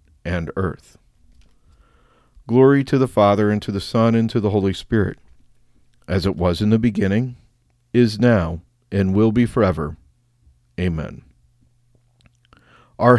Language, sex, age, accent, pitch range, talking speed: English, male, 50-69, American, 95-120 Hz, 130 wpm